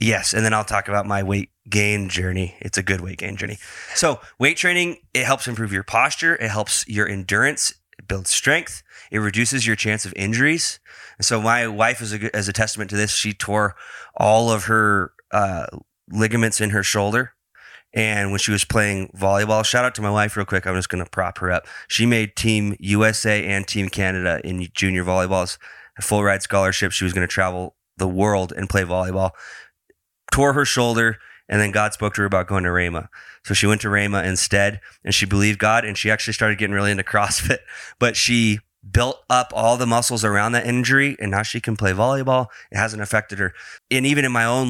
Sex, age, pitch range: male, 20-39, 100-115 Hz